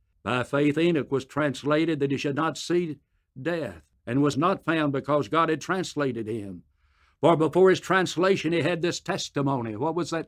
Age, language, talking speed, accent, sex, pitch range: 60-79, English, 180 wpm, American, male, 110-155 Hz